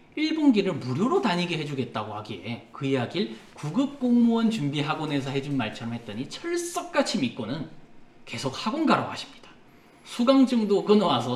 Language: English